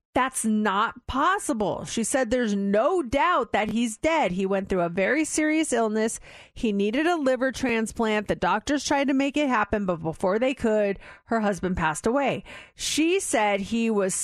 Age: 30-49